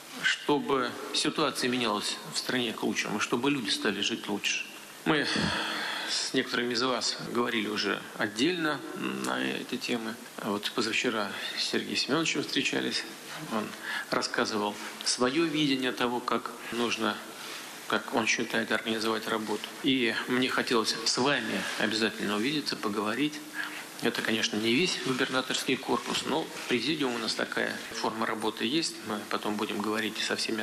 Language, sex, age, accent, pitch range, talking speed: Russian, male, 40-59, native, 110-140 Hz, 135 wpm